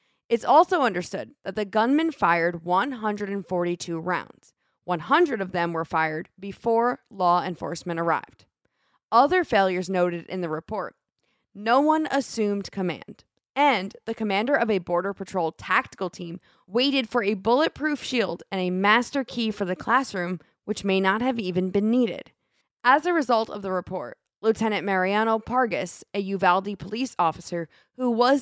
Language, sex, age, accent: English, female, 20-39, American